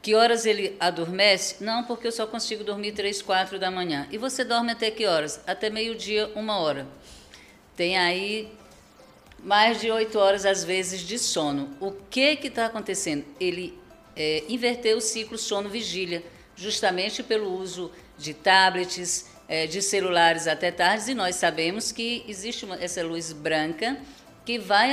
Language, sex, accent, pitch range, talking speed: Portuguese, female, Brazilian, 180-240 Hz, 155 wpm